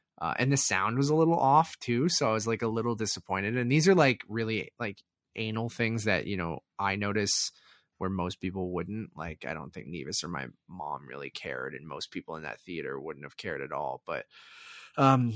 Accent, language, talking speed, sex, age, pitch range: American, English, 220 wpm, male, 20-39, 105-145 Hz